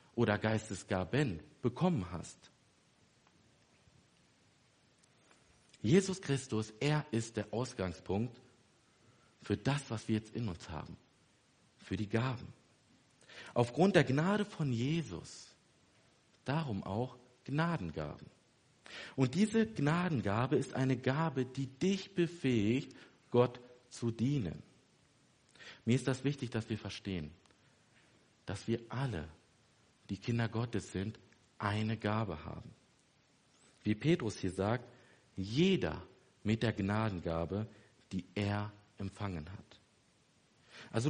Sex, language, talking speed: male, German, 105 wpm